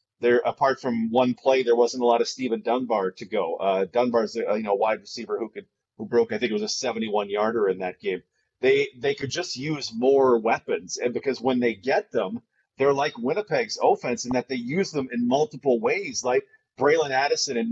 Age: 30-49